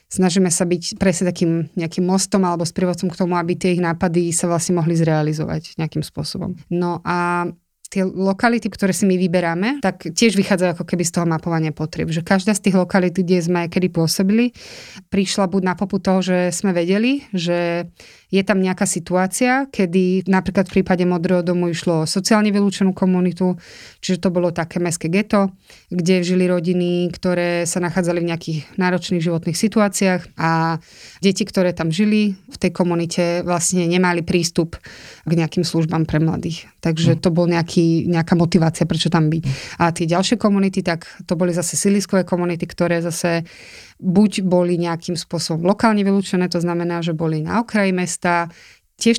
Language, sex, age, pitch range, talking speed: Slovak, female, 20-39, 170-190 Hz, 170 wpm